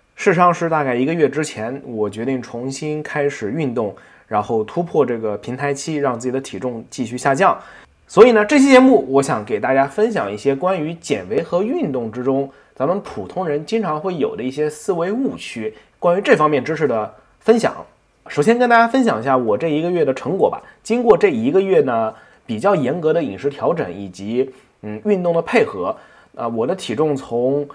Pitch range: 130-215 Hz